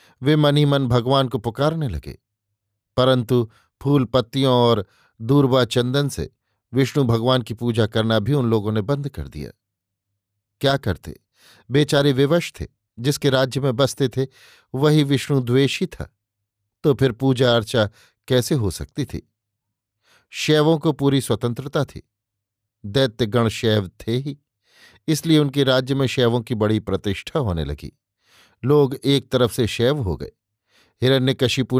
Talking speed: 140 wpm